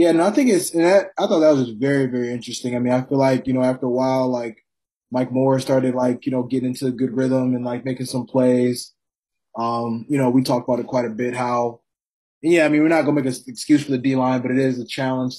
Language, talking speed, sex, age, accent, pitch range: English, 275 wpm, male, 20-39, American, 125-135 Hz